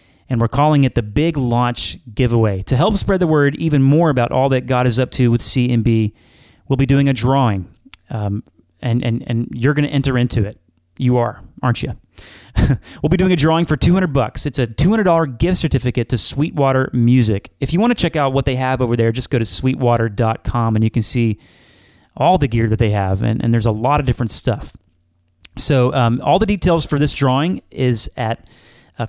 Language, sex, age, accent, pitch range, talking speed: English, male, 30-49, American, 115-140 Hz, 215 wpm